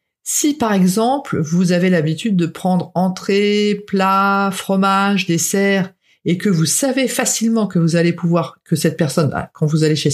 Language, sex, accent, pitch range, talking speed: French, female, French, 160-210 Hz, 165 wpm